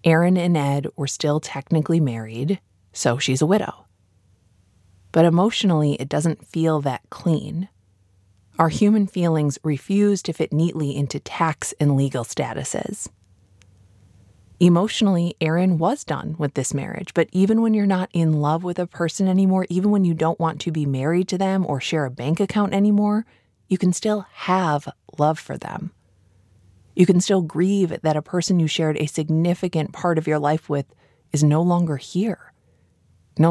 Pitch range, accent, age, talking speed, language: 140-180 Hz, American, 20-39, 165 wpm, English